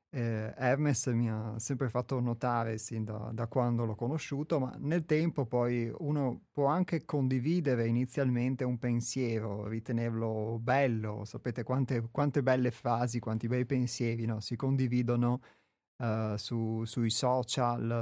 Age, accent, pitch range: 30-49, native, 115-135 Hz